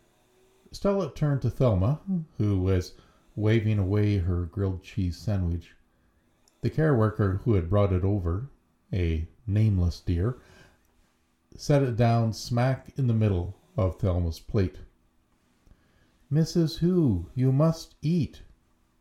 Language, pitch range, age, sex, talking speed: English, 85-125 Hz, 50-69, male, 120 wpm